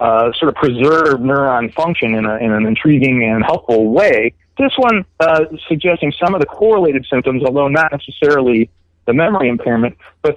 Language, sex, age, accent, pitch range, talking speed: English, male, 40-59, American, 110-155 Hz, 175 wpm